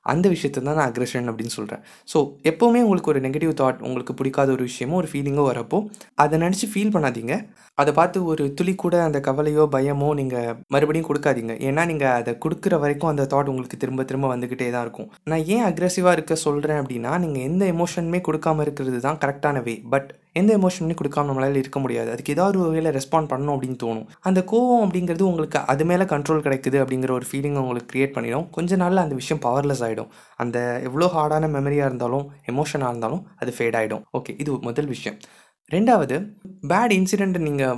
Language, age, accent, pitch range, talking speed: Tamil, 20-39, native, 130-170 Hz, 180 wpm